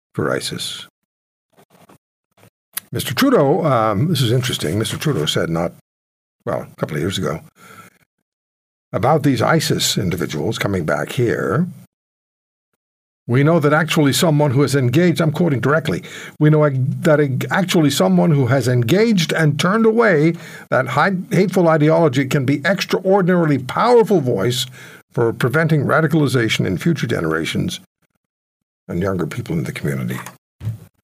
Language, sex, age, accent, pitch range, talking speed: English, male, 60-79, American, 110-165 Hz, 130 wpm